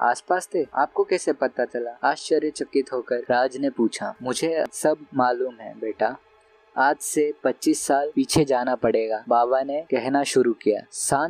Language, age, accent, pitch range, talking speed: Hindi, 20-39, native, 125-155 Hz, 150 wpm